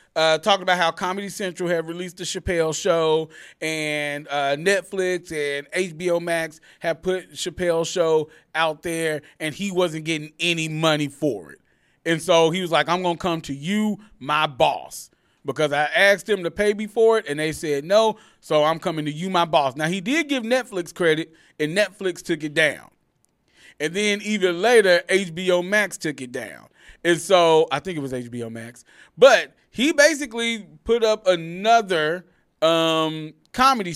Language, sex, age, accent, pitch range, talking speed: English, male, 30-49, American, 160-215 Hz, 175 wpm